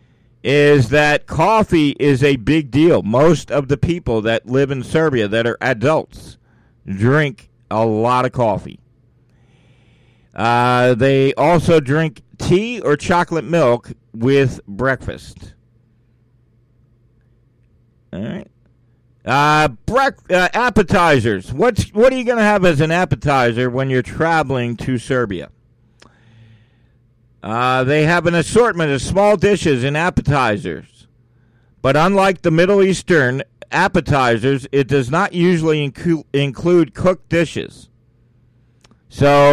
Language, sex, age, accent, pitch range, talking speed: English, male, 50-69, American, 120-170 Hz, 120 wpm